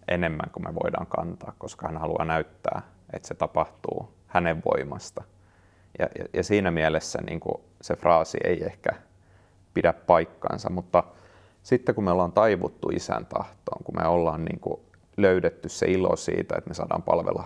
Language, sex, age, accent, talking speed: Finnish, male, 30-49, native, 160 wpm